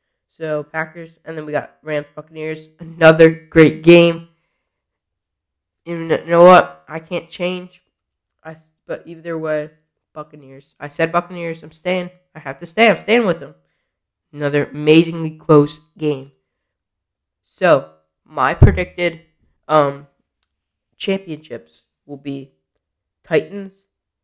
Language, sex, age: English, female, 20-39